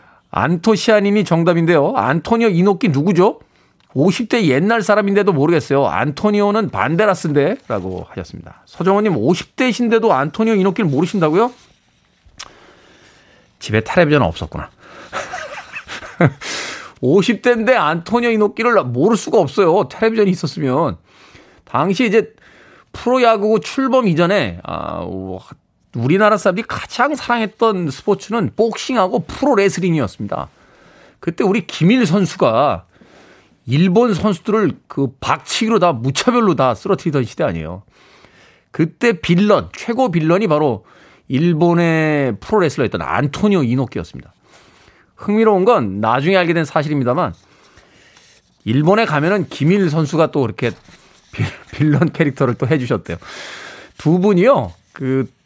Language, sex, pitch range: Korean, male, 140-215 Hz